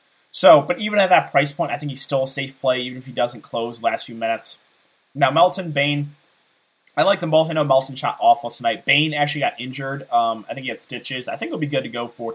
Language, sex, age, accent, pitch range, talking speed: English, male, 20-39, American, 120-150 Hz, 260 wpm